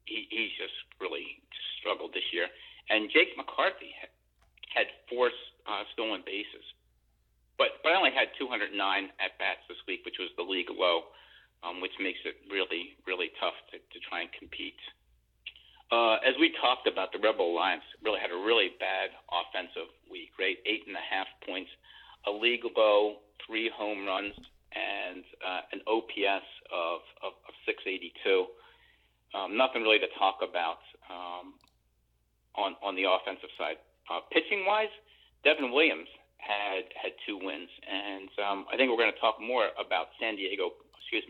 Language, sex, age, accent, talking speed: English, male, 50-69, American, 160 wpm